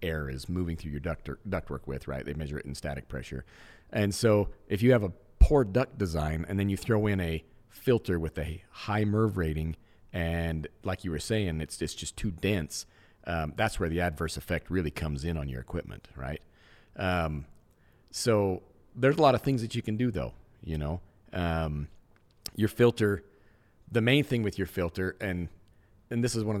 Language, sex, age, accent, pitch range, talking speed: English, male, 40-59, American, 80-105 Hz, 205 wpm